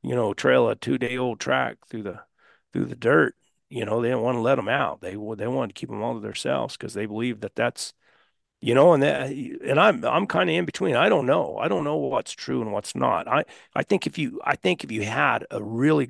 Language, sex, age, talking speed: English, male, 50-69, 255 wpm